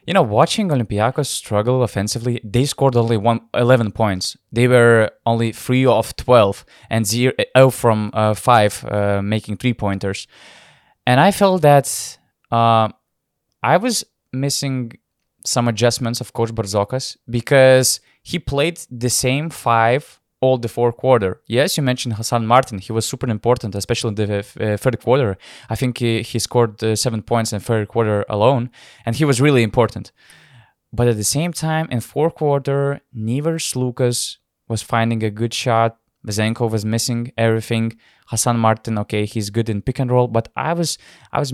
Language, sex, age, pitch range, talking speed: English, male, 20-39, 110-130 Hz, 170 wpm